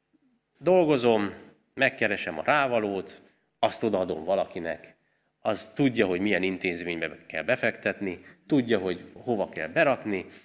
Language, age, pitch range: Hungarian, 30-49, 95-130 Hz